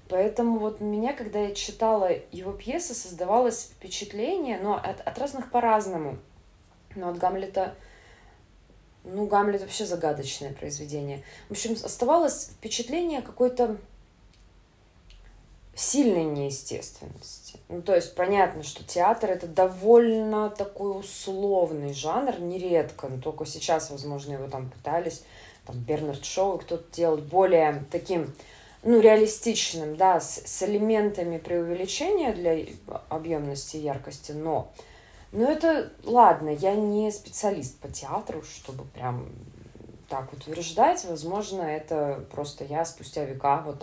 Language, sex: Russian, female